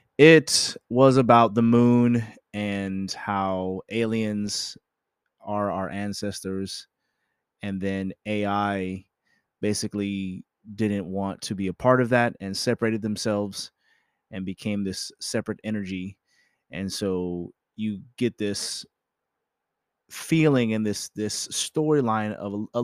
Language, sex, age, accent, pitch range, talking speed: English, male, 30-49, American, 95-110 Hz, 115 wpm